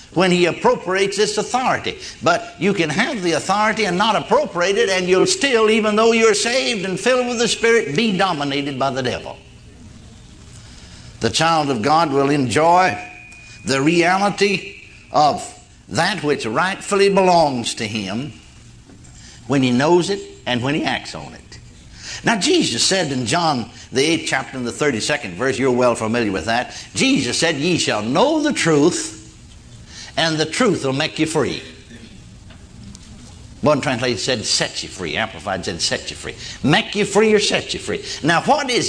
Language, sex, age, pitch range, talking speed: English, male, 60-79, 130-200 Hz, 170 wpm